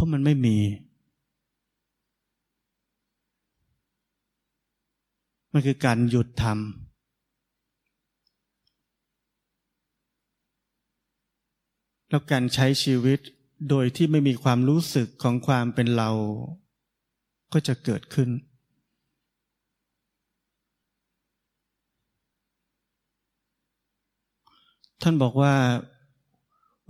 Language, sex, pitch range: Thai, male, 120-145 Hz